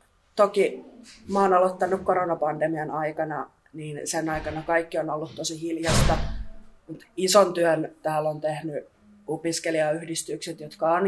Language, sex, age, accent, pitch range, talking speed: Finnish, female, 20-39, native, 155-180 Hz, 120 wpm